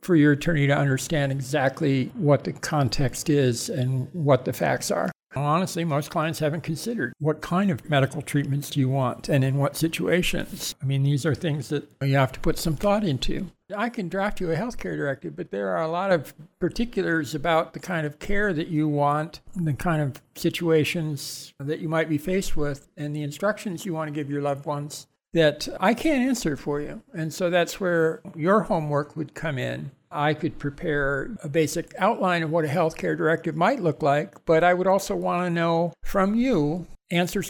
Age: 60-79